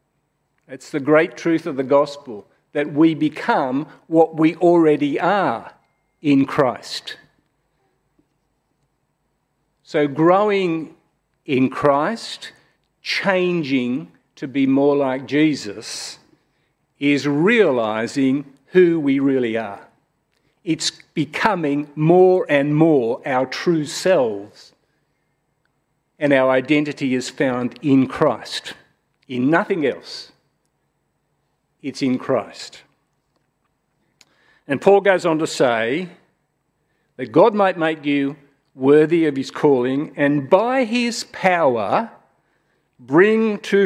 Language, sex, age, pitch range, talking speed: English, male, 50-69, 135-170 Hz, 100 wpm